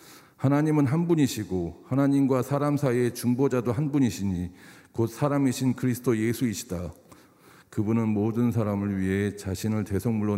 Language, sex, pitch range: Korean, male, 100-125 Hz